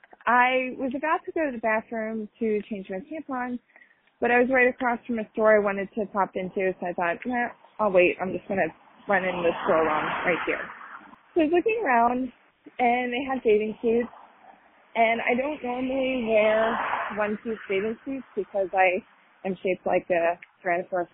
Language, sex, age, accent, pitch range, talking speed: English, female, 20-39, American, 190-255 Hz, 190 wpm